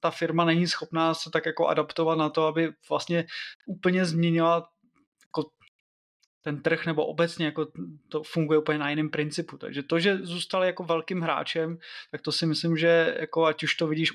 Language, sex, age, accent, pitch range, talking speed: Czech, male, 20-39, native, 150-175 Hz, 180 wpm